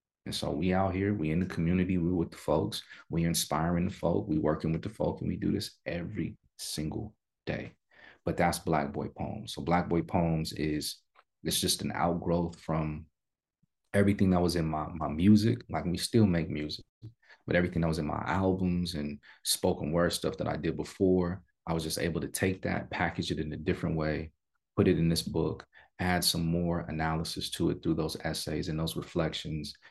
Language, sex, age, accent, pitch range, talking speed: English, male, 30-49, American, 80-90 Hz, 205 wpm